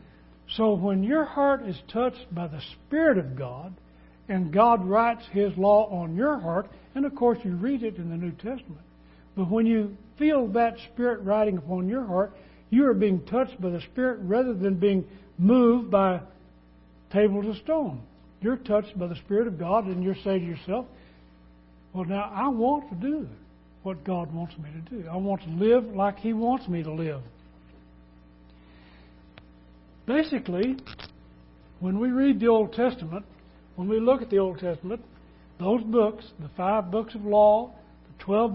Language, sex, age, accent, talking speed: English, male, 60-79, American, 175 wpm